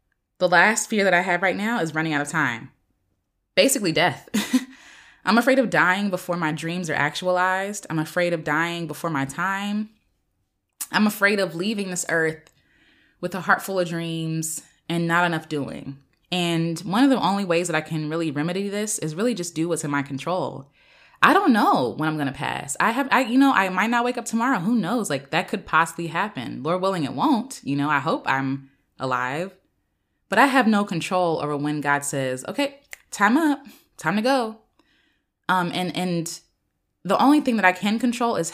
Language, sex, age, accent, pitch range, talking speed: English, female, 20-39, American, 150-210 Hz, 200 wpm